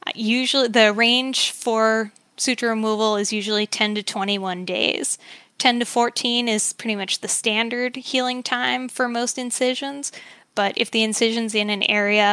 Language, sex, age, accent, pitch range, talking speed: English, female, 10-29, American, 205-245 Hz, 155 wpm